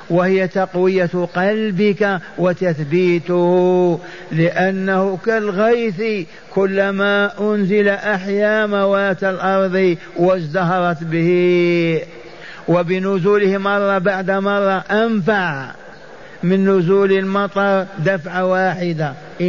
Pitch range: 180-195 Hz